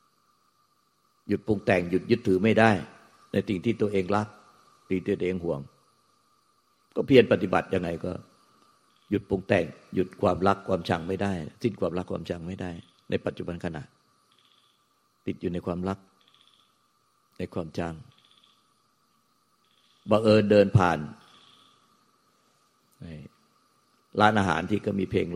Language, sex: Thai, male